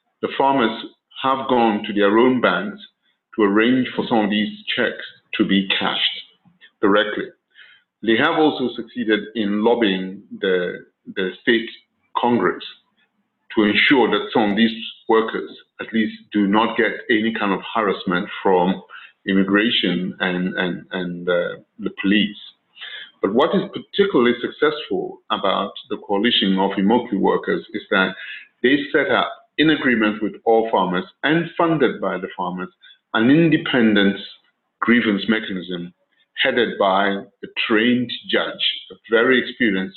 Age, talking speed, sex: 50-69, 135 wpm, male